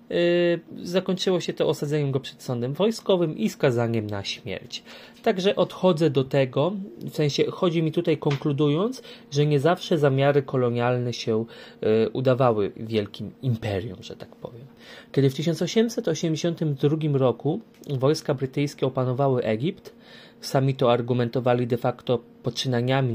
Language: Polish